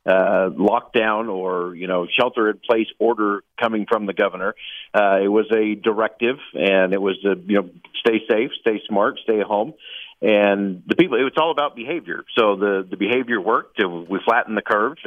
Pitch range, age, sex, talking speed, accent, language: 100-120 Hz, 50-69, male, 195 wpm, American, English